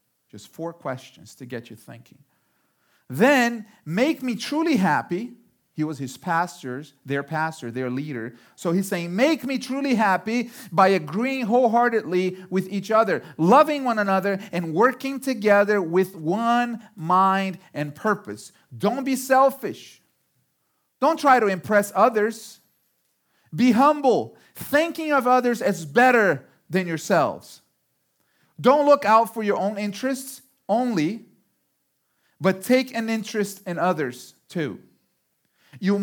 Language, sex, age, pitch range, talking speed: English, male, 40-59, 185-250 Hz, 130 wpm